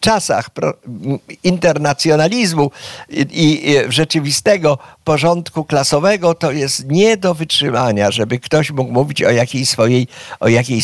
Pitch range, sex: 120-160 Hz, male